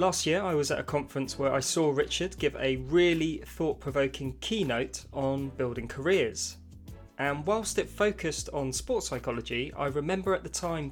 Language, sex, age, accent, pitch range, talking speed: English, male, 20-39, British, 125-155 Hz, 170 wpm